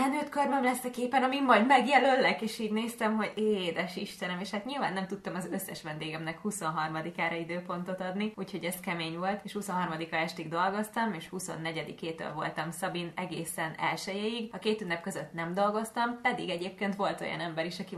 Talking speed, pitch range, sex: 175 wpm, 170-215 Hz, female